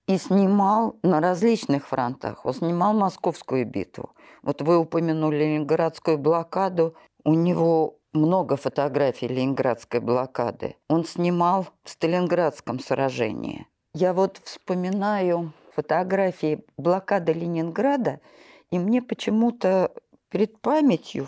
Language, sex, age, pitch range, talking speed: Russian, female, 50-69, 155-225 Hz, 100 wpm